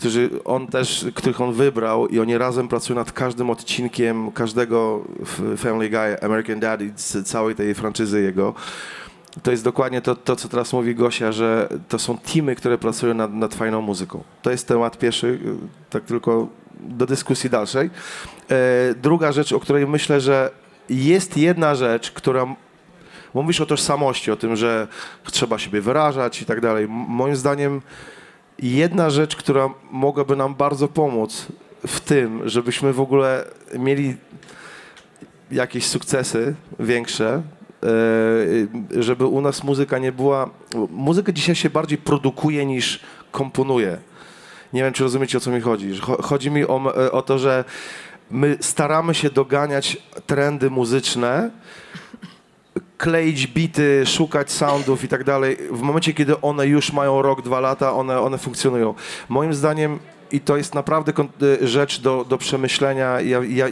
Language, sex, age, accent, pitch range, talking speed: Polish, male, 30-49, native, 120-145 Hz, 145 wpm